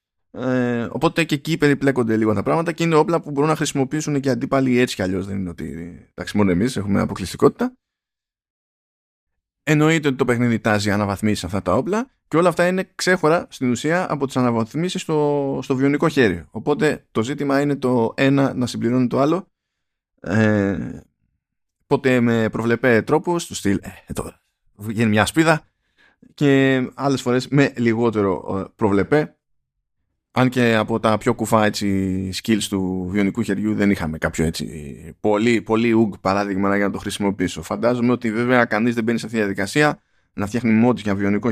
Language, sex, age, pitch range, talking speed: Greek, male, 20-39, 100-140 Hz, 170 wpm